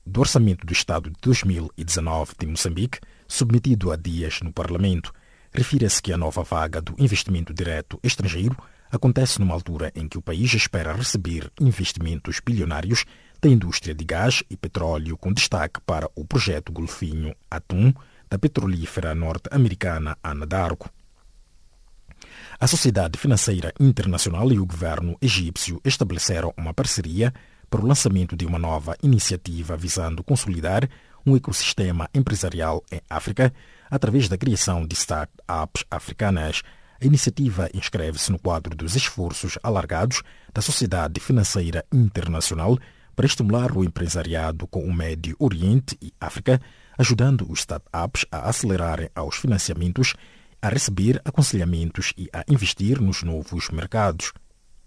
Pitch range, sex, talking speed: 85-120 Hz, male, 130 wpm